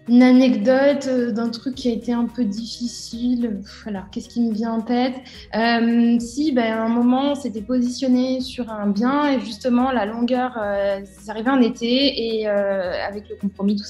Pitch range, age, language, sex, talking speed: 200-240 Hz, 20-39, French, female, 185 wpm